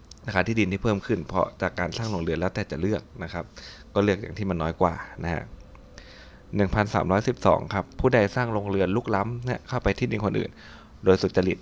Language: Thai